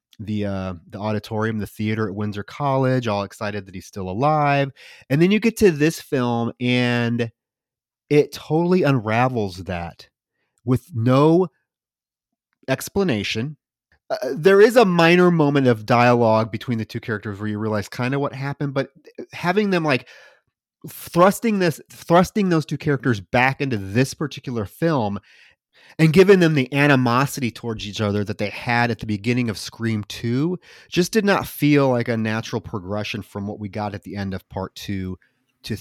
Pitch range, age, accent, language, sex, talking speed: 105-140 Hz, 30-49, American, English, male, 170 wpm